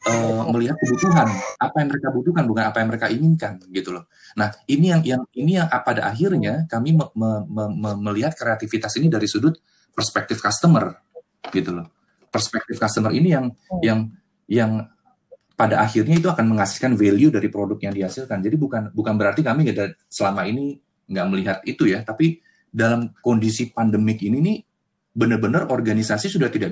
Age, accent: 30-49, native